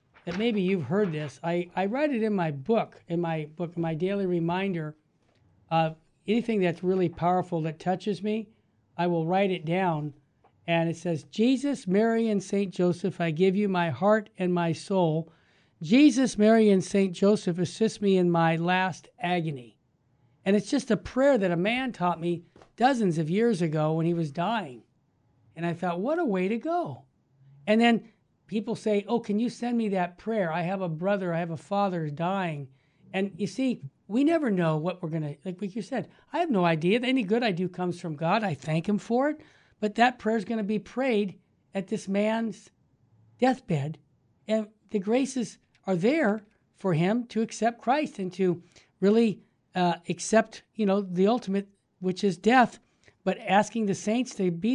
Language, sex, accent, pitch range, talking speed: English, male, American, 170-220 Hz, 190 wpm